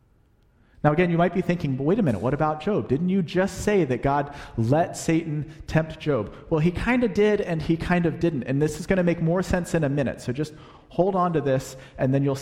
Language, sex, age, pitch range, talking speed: English, male, 40-59, 115-155 Hz, 255 wpm